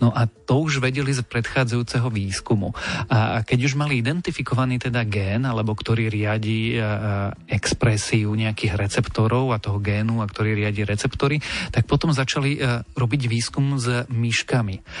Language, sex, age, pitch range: Slovak, male, 40-59, 110-130 Hz